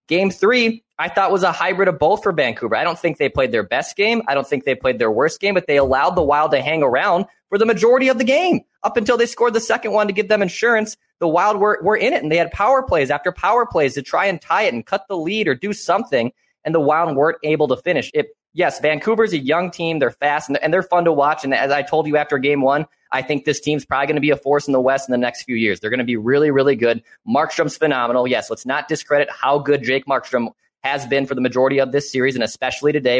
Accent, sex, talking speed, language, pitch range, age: American, male, 275 wpm, English, 135-185 Hz, 20-39